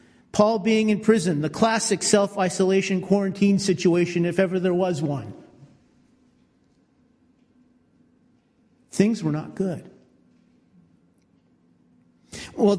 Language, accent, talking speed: English, American, 90 wpm